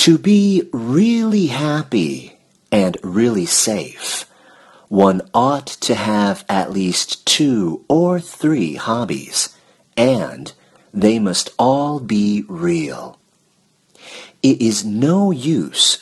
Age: 40-59